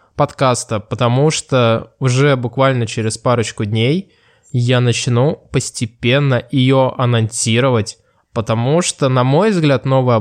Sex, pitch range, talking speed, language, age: male, 115-135 Hz, 110 wpm, Russian, 20-39